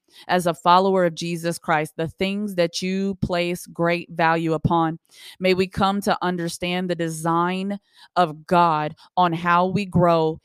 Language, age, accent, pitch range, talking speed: English, 20-39, American, 160-185 Hz, 155 wpm